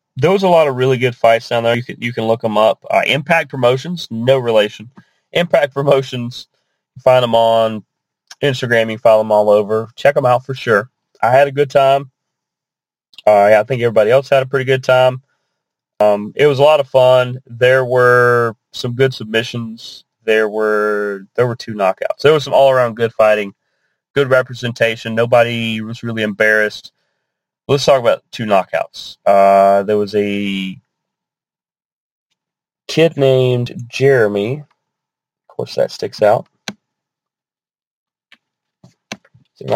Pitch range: 110-135 Hz